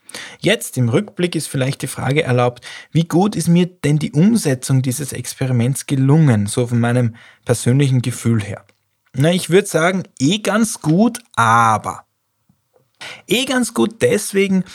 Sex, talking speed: male, 145 wpm